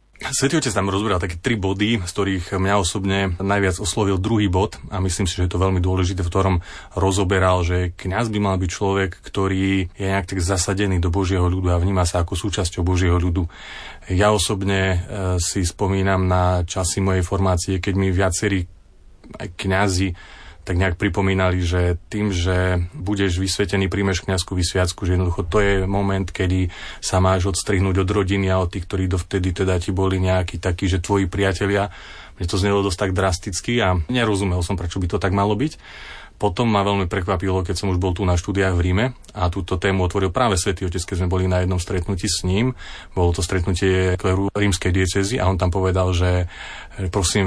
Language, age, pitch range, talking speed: Slovak, 30-49, 90-100 Hz, 185 wpm